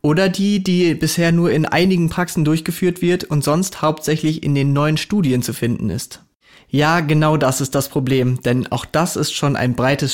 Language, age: German, 30-49